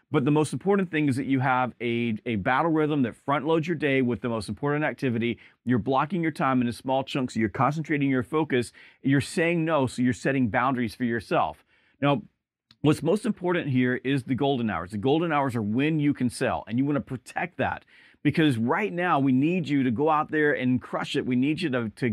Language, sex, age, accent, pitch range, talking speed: English, male, 40-59, American, 125-160 Hz, 235 wpm